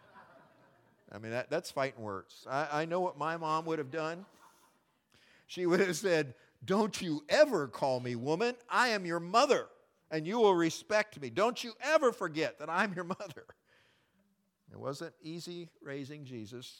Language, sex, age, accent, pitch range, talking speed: English, male, 50-69, American, 115-165 Hz, 170 wpm